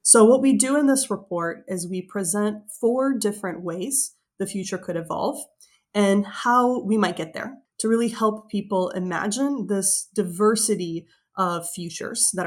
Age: 20-39